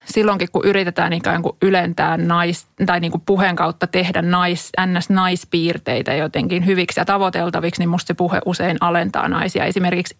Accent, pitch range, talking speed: native, 170-195 Hz, 160 wpm